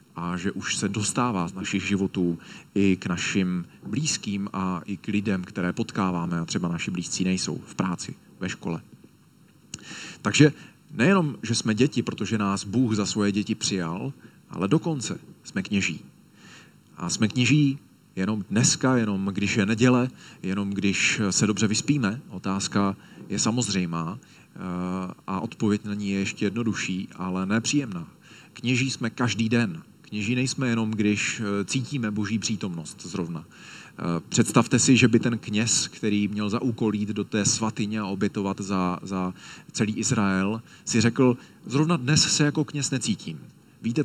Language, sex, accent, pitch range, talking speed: Czech, male, native, 100-125 Hz, 150 wpm